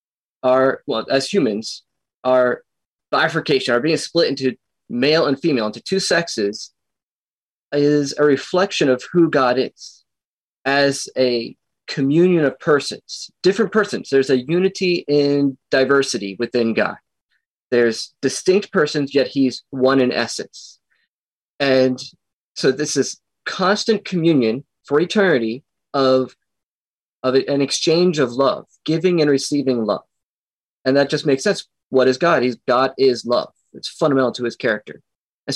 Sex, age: male, 20-39